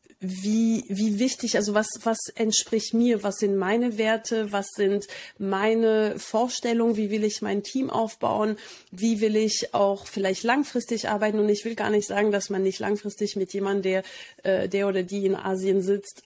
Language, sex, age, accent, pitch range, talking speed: German, female, 30-49, German, 195-225 Hz, 175 wpm